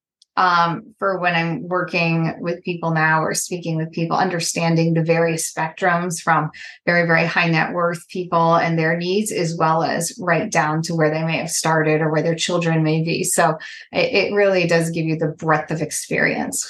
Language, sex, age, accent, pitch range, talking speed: English, female, 20-39, American, 165-195 Hz, 195 wpm